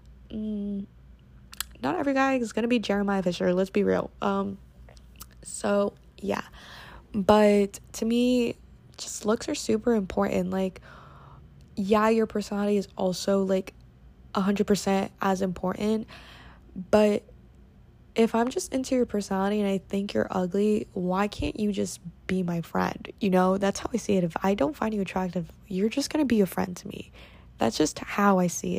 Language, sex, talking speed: English, female, 165 wpm